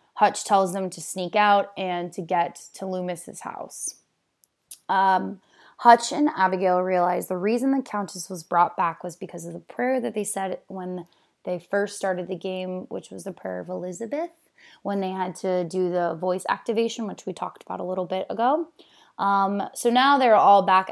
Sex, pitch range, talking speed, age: female, 185-235 Hz, 190 wpm, 20-39